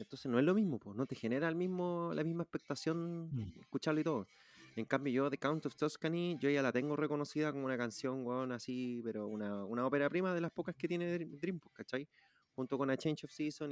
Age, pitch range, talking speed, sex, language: 30-49, 115-165 Hz, 225 wpm, male, Spanish